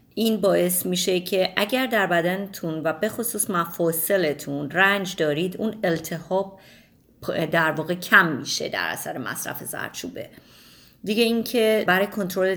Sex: female